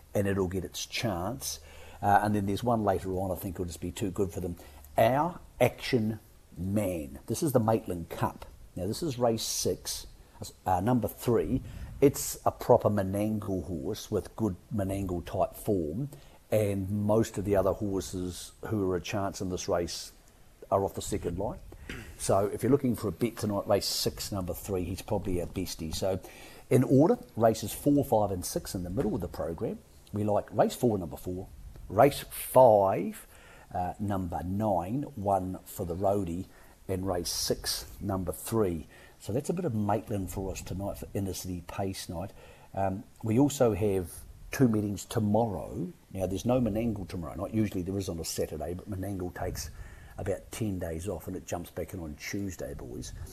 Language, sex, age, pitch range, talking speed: English, male, 50-69, 90-110 Hz, 185 wpm